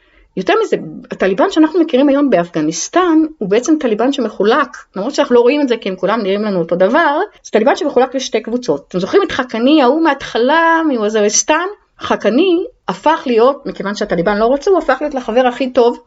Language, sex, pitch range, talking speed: Hebrew, female, 205-295 Hz, 180 wpm